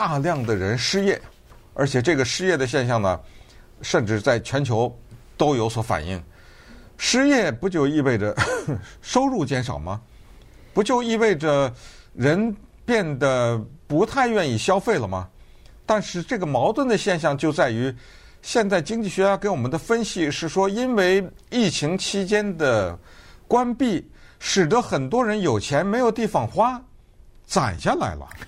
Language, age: Chinese, 50-69